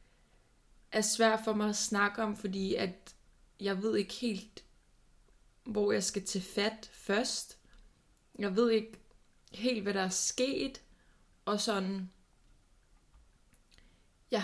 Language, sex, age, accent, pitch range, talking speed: Danish, female, 20-39, native, 195-220 Hz, 125 wpm